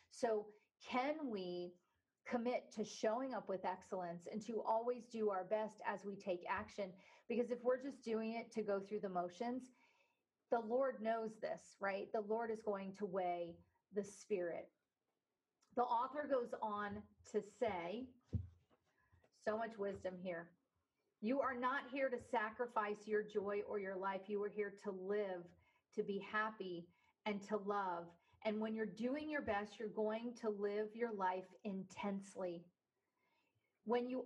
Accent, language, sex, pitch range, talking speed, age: American, English, female, 205-250 Hz, 160 wpm, 40-59